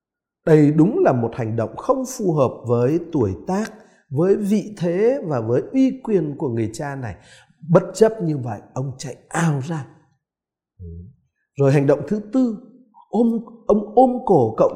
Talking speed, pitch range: 170 wpm, 125-200 Hz